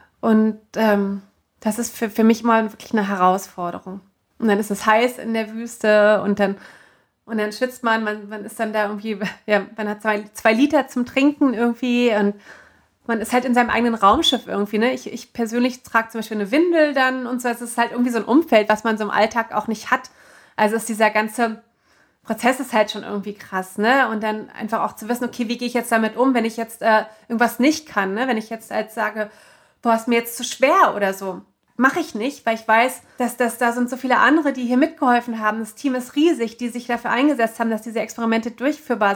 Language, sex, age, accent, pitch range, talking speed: German, female, 30-49, German, 210-240 Hz, 235 wpm